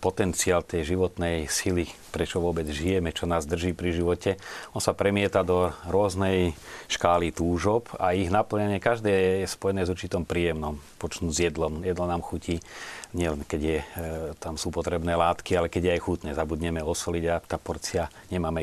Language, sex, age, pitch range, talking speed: Slovak, male, 40-59, 80-95 Hz, 170 wpm